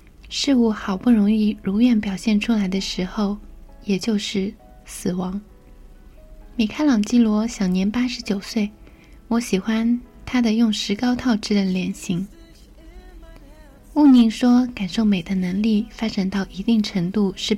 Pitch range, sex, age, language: 190-230 Hz, female, 20-39, Chinese